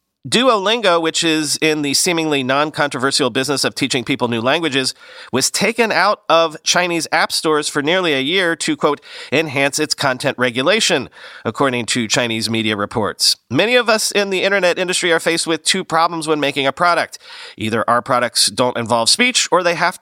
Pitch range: 130-175 Hz